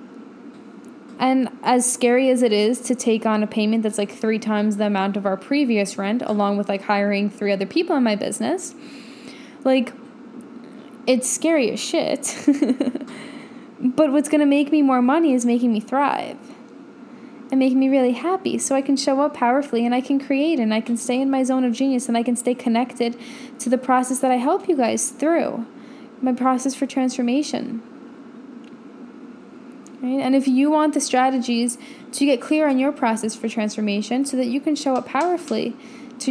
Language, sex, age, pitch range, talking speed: English, female, 10-29, 235-270 Hz, 185 wpm